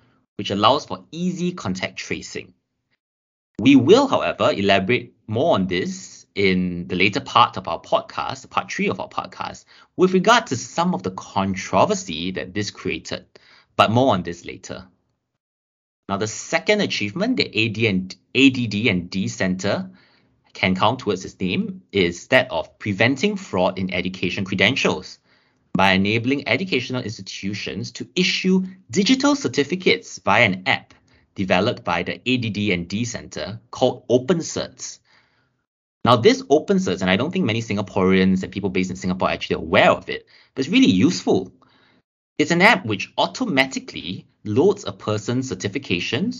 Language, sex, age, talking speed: English, male, 30-49, 145 wpm